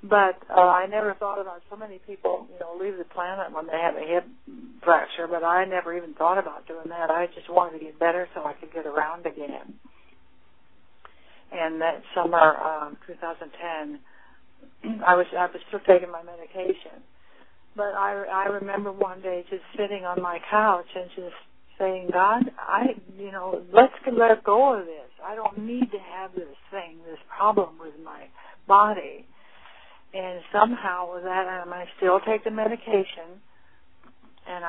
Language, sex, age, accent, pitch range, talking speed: English, female, 60-79, American, 170-205 Hz, 170 wpm